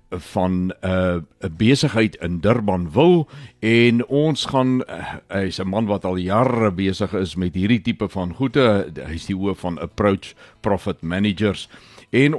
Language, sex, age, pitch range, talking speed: Swedish, male, 60-79, 95-120 Hz, 150 wpm